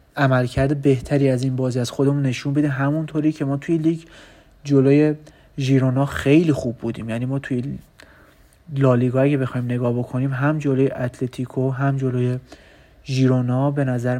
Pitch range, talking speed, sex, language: 125-140 Hz, 150 wpm, male, Persian